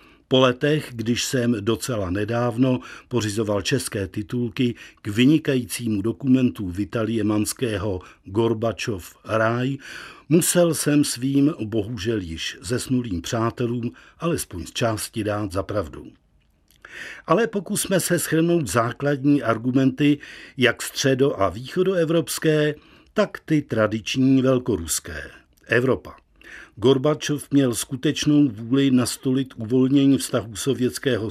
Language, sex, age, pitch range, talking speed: Czech, male, 50-69, 110-140 Hz, 100 wpm